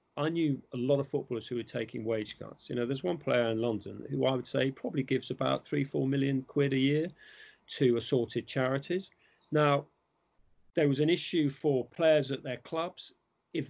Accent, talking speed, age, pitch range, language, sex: British, 195 wpm, 40-59, 120-150 Hz, English, male